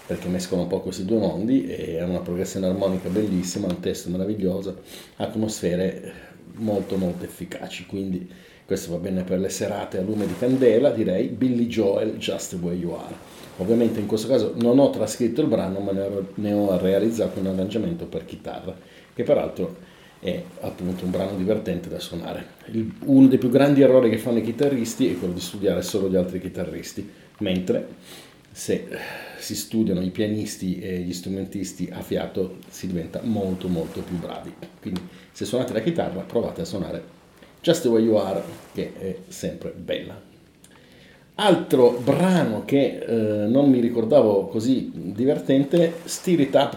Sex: male